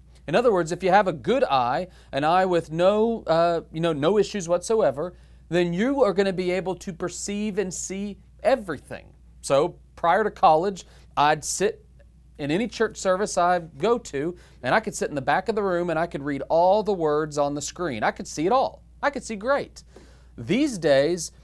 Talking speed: 210 wpm